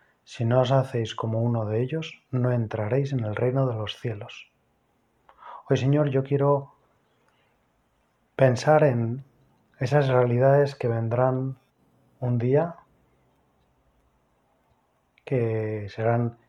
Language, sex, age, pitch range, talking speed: Spanish, male, 30-49, 115-135 Hz, 110 wpm